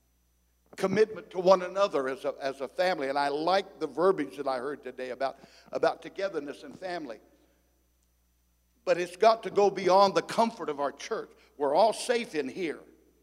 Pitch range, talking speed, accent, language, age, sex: 155-225 Hz, 170 wpm, American, English, 60-79, male